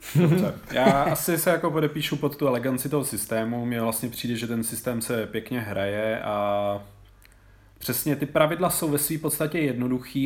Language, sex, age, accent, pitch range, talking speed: Czech, male, 30-49, native, 115-135 Hz, 165 wpm